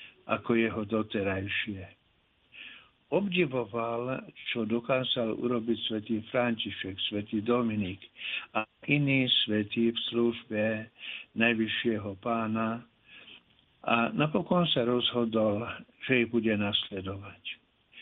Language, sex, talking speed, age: Slovak, male, 85 wpm, 60-79